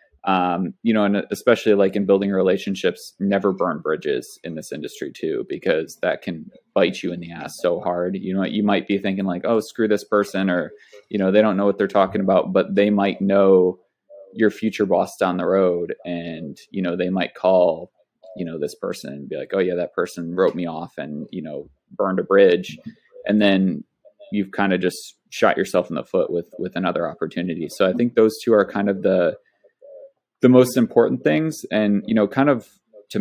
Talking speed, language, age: 210 wpm, English, 20-39